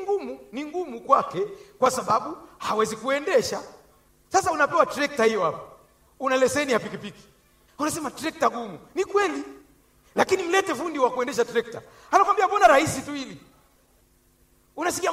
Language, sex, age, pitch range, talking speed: Swahili, male, 40-59, 245-350 Hz, 135 wpm